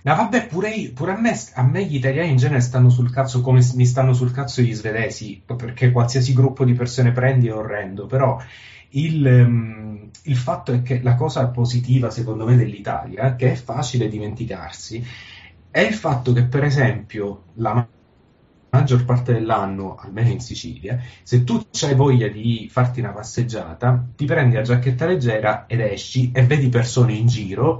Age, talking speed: 30-49, 175 wpm